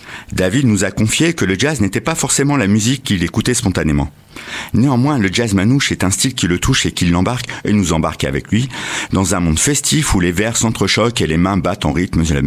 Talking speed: 235 wpm